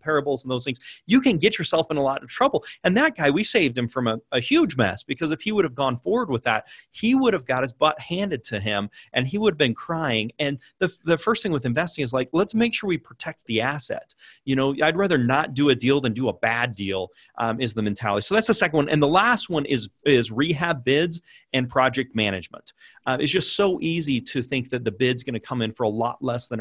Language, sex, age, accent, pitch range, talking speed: English, male, 30-49, American, 120-155 Hz, 260 wpm